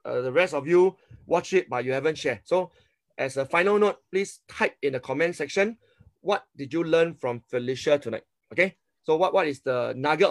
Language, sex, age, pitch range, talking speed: English, male, 20-39, 125-175 Hz, 210 wpm